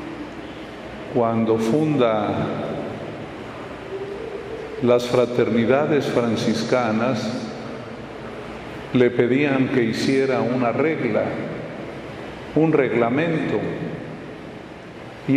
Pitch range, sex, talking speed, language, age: 115-140 Hz, male, 55 wpm, Spanish, 50-69